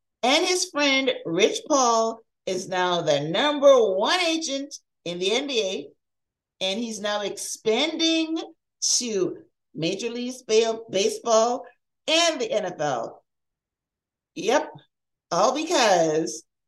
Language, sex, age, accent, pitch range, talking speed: English, female, 50-69, American, 195-295 Hz, 100 wpm